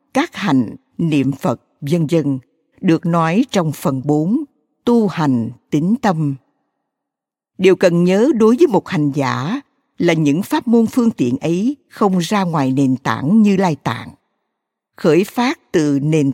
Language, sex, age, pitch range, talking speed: Vietnamese, female, 60-79, 145-235 Hz, 155 wpm